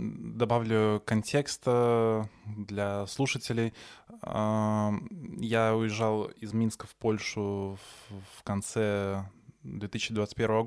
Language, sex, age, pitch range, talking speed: Russian, male, 20-39, 105-120 Hz, 75 wpm